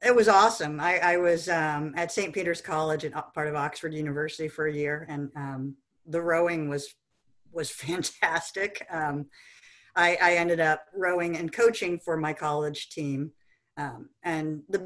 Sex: female